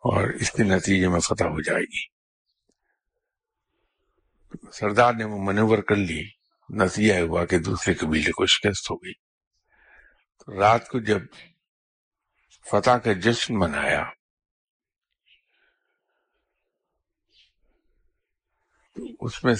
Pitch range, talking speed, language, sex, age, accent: 95-125 Hz, 85 wpm, English, male, 60-79, Indian